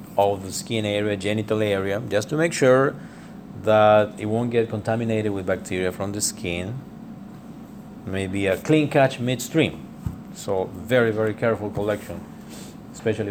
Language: English